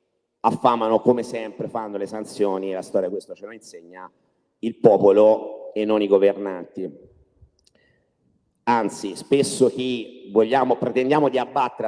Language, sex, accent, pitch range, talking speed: Italian, male, native, 110-135 Hz, 130 wpm